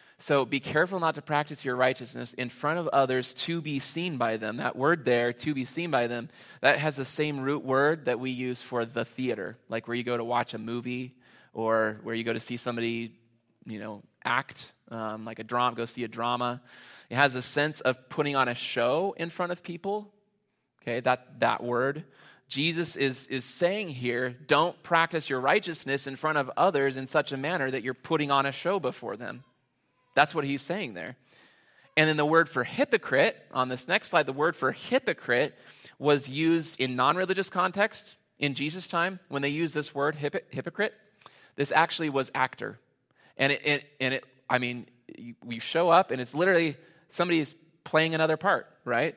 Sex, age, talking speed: male, 20-39, 195 wpm